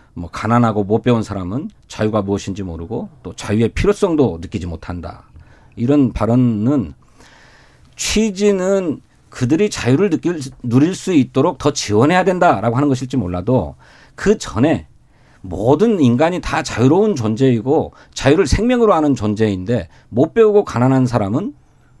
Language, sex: Korean, male